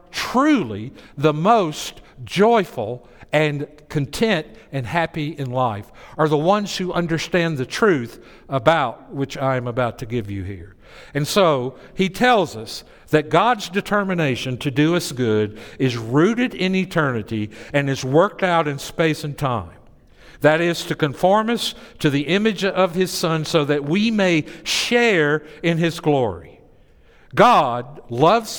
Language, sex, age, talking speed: English, male, 60-79, 150 wpm